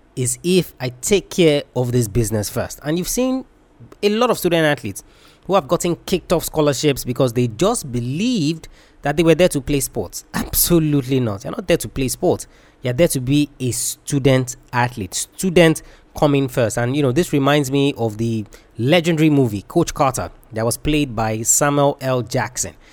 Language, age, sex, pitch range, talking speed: English, 20-39, male, 120-155 Hz, 190 wpm